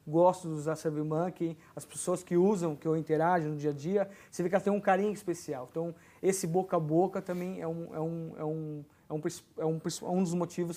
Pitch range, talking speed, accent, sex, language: 155-190 Hz, 190 wpm, Brazilian, male, Portuguese